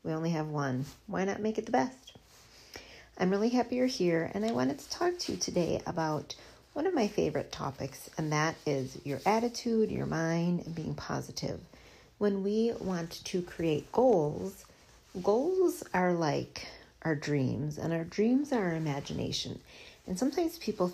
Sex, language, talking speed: female, English, 170 wpm